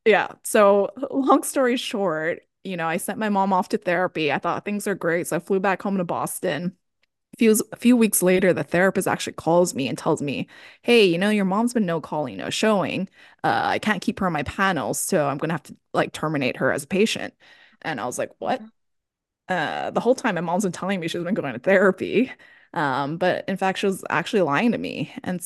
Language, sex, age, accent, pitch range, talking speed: English, female, 20-39, American, 175-220 Hz, 235 wpm